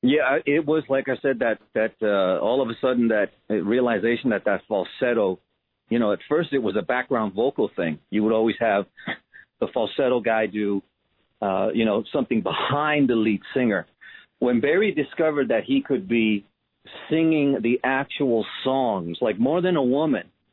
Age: 40-59